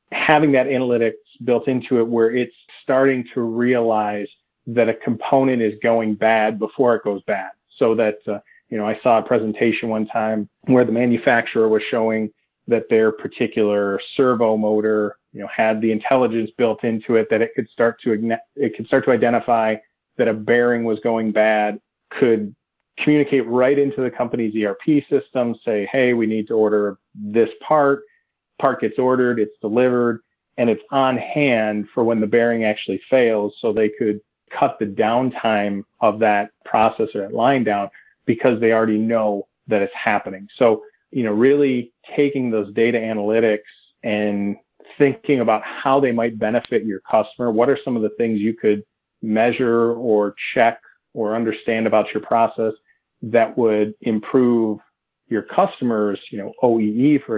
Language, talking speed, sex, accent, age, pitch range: English, 165 wpm, male, American, 40-59, 110-125 Hz